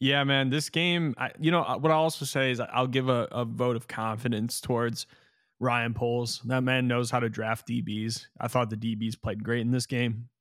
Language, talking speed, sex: English, 215 wpm, male